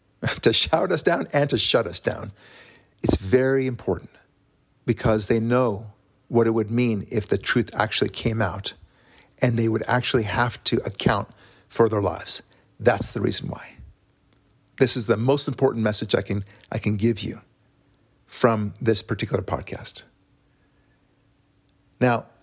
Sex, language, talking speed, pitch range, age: male, English, 155 wpm, 105-125 Hz, 50-69